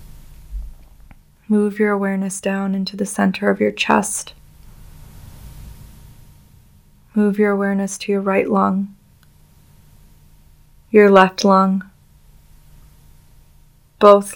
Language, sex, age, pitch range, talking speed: English, female, 20-39, 185-200 Hz, 90 wpm